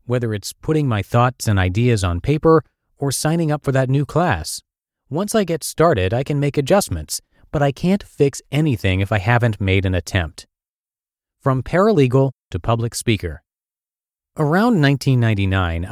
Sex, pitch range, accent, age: male, 95-140 Hz, American, 30-49